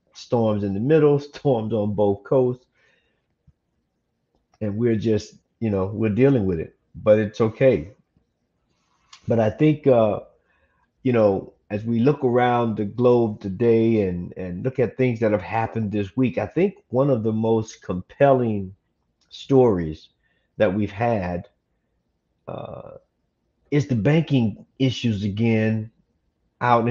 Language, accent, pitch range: English, American, 105-135 Hz